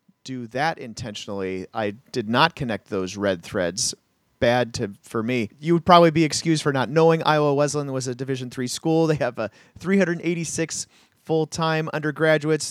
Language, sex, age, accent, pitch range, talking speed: English, male, 40-59, American, 120-160 Hz, 165 wpm